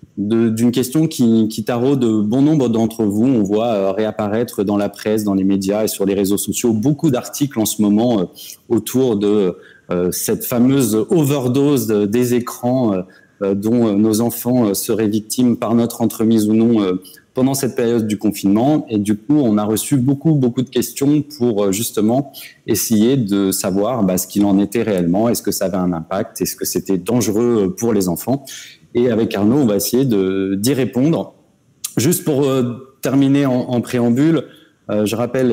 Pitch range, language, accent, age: 105-130 Hz, French, French, 30-49